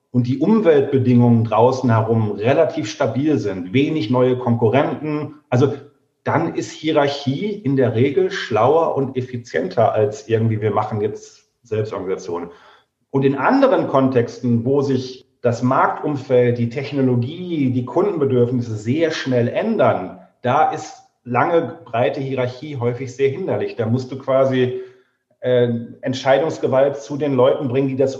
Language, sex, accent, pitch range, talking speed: German, male, German, 125-150 Hz, 130 wpm